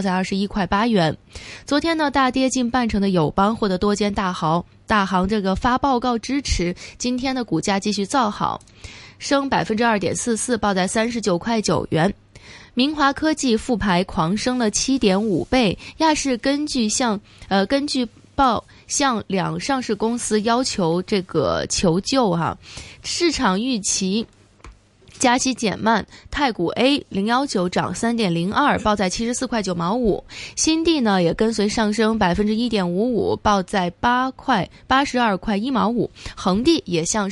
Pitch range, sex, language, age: 195-250 Hz, female, Chinese, 20-39